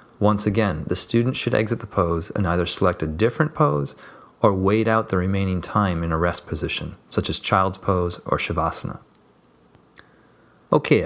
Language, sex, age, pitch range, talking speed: English, male, 30-49, 90-115 Hz, 170 wpm